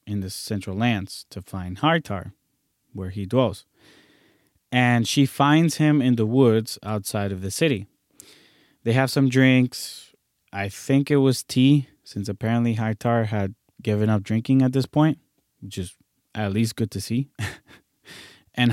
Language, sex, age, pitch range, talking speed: English, male, 20-39, 105-130 Hz, 155 wpm